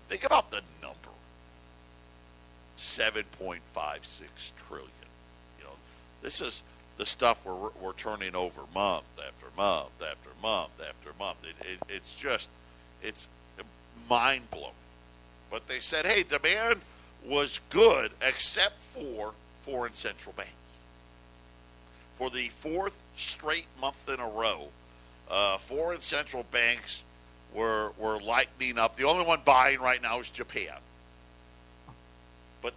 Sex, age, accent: male, 50-69, American